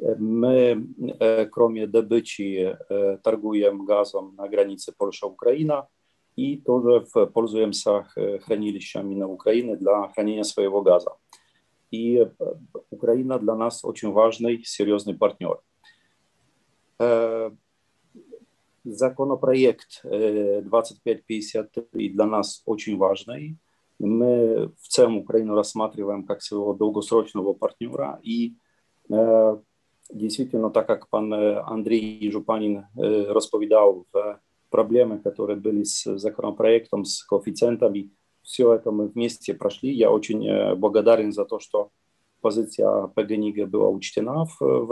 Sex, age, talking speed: male, 40-59, 105 wpm